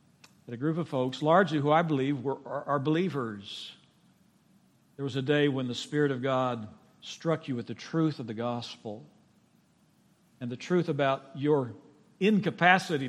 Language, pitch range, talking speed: English, 140-195 Hz, 165 wpm